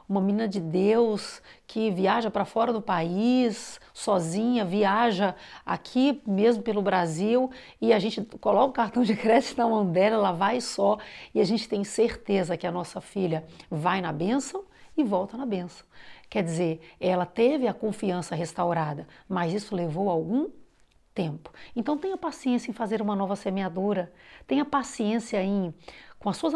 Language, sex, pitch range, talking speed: Portuguese, female, 185-235 Hz, 165 wpm